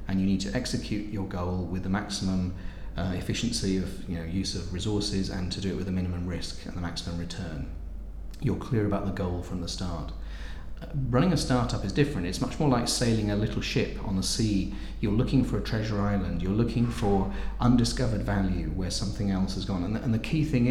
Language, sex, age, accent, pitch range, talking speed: English, male, 40-59, British, 90-110 Hz, 215 wpm